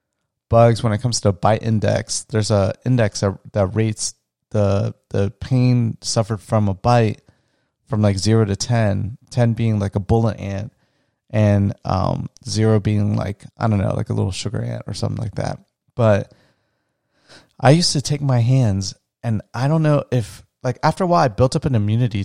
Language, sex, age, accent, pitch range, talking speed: English, male, 30-49, American, 105-130 Hz, 185 wpm